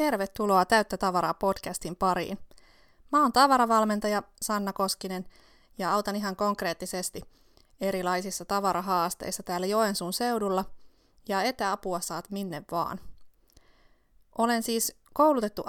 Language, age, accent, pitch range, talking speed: Finnish, 20-39, native, 180-210 Hz, 105 wpm